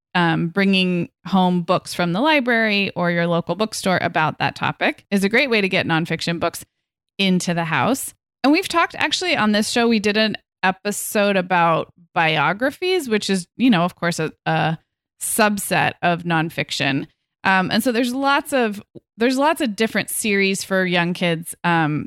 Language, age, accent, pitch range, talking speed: English, 20-39, American, 175-220 Hz, 175 wpm